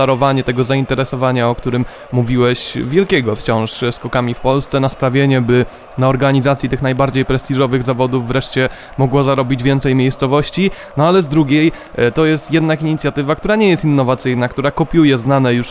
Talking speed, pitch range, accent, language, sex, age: 155 wpm, 130-155 Hz, native, Polish, male, 20-39